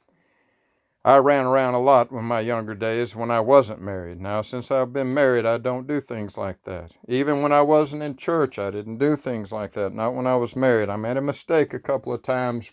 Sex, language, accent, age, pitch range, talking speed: male, English, American, 60-79, 125-155 Hz, 230 wpm